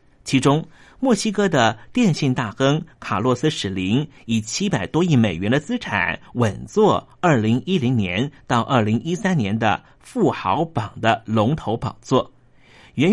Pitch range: 115-160 Hz